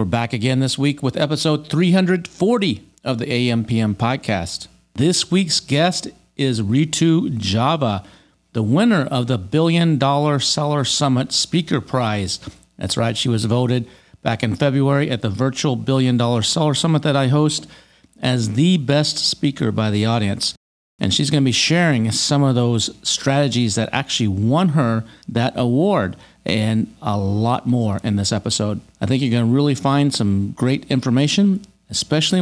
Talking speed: 160 wpm